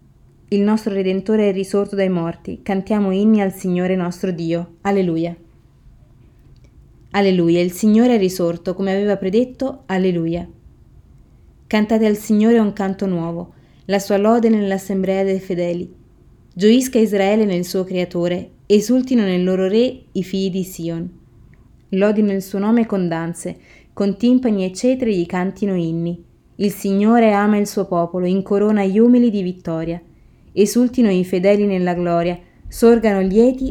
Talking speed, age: 140 wpm, 20-39